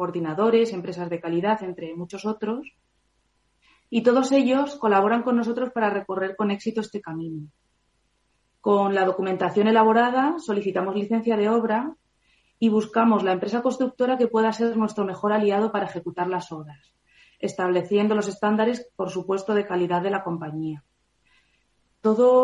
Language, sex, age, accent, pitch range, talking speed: Spanish, female, 30-49, Spanish, 185-225 Hz, 140 wpm